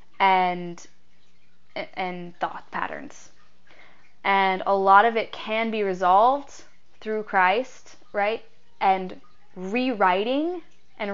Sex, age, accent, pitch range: female, 10-29, American, 190-225 Hz